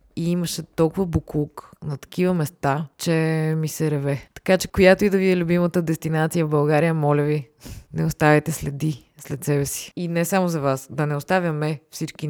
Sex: female